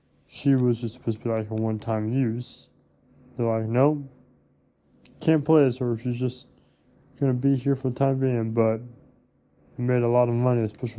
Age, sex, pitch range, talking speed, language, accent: 20-39, male, 115-130 Hz, 190 wpm, English, American